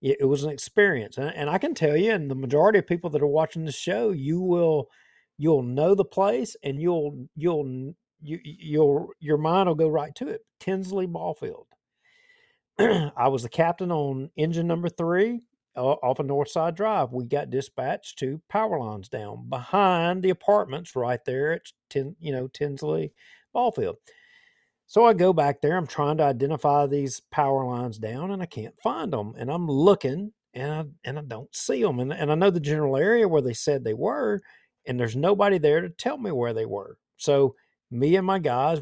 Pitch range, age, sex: 135-180 Hz, 50-69, male